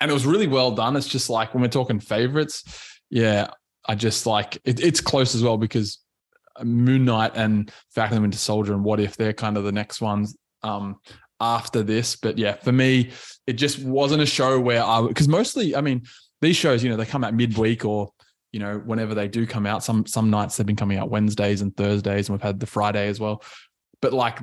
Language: English